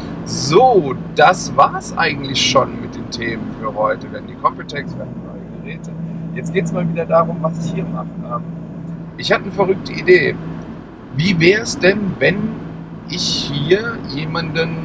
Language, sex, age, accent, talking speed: German, male, 40-59, German, 160 wpm